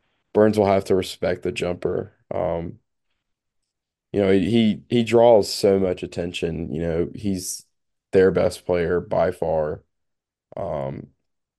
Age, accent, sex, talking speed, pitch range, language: 20-39, American, male, 130 wpm, 85-100 Hz, English